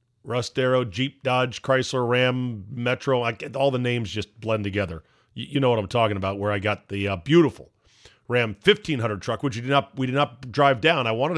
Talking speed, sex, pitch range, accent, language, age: 195 wpm, male, 110-140 Hz, American, English, 40-59